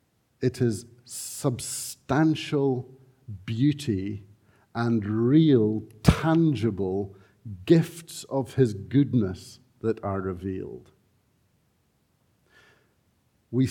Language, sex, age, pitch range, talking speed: English, male, 60-79, 110-140 Hz, 65 wpm